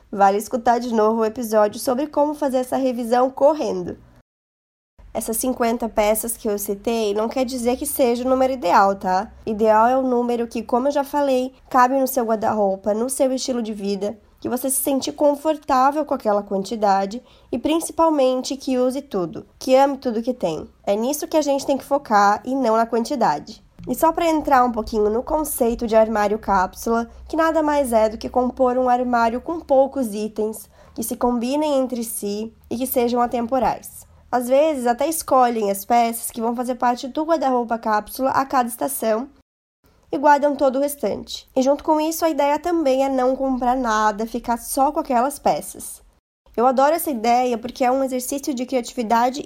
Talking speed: 185 wpm